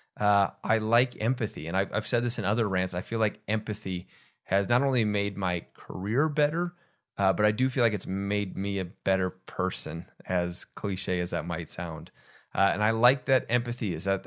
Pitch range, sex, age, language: 95-120 Hz, male, 30-49, English